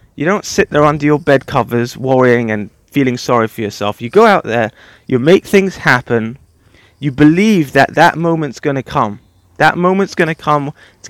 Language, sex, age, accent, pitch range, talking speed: English, male, 30-49, British, 120-165 Hz, 195 wpm